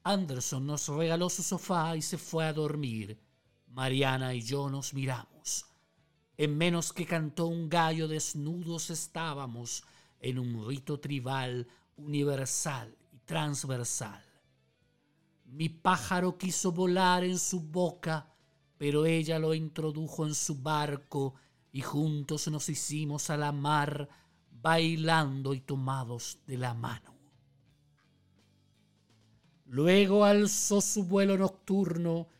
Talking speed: 115 wpm